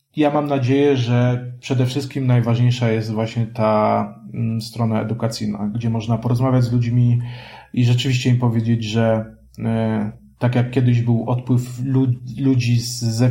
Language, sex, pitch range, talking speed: Polish, male, 115-130 Hz, 130 wpm